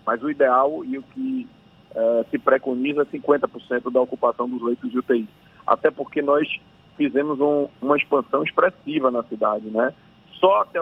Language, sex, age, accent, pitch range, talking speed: Portuguese, male, 40-59, Brazilian, 125-155 Hz, 155 wpm